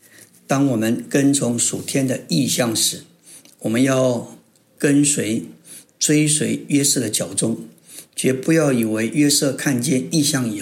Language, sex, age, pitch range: Chinese, male, 60-79, 125-145 Hz